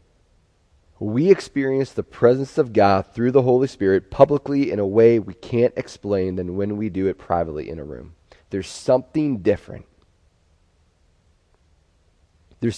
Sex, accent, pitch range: male, American, 85-120 Hz